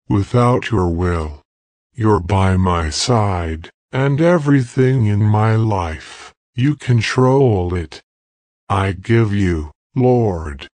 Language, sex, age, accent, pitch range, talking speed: English, female, 50-69, American, 85-120 Hz, 105 wpm